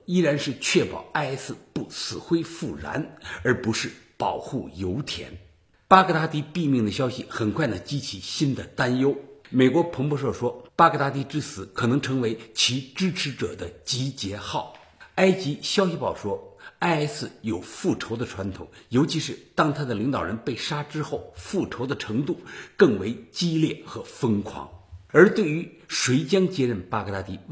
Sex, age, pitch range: male, 50-69, 110-165 Hz